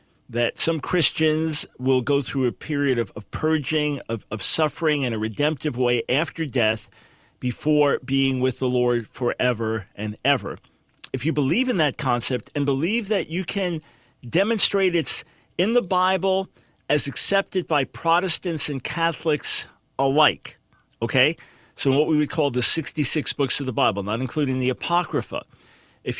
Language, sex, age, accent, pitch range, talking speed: English, male, 50-69, American, 125-160 Hz, 155 wpm